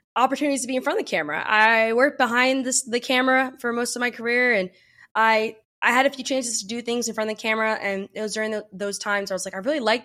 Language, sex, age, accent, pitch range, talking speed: English, female, 20-39, American, 200-240 Hz, 285 wpm